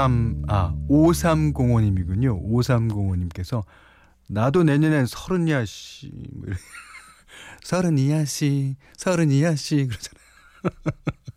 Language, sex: Korean, male